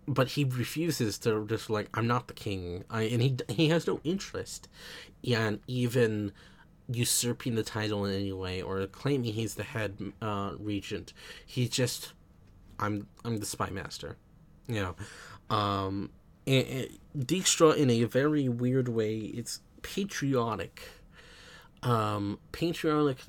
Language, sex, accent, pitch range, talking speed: English, male, American, 105-130 Hz, 135 wpm